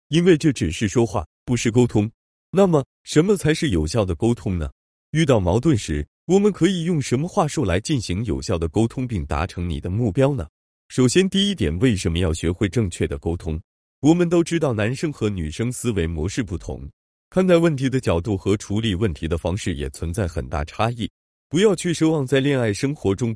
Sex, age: male, 30-49